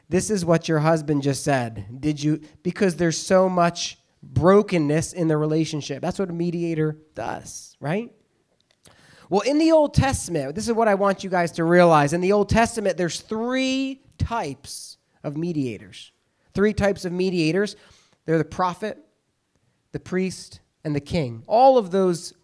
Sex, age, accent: male, 30-49, American